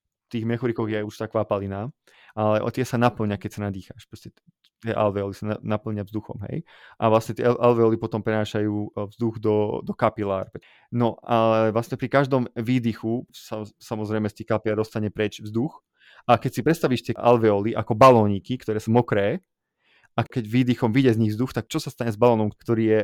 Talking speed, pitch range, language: 180 wpm, 105-125 Hz, Slovak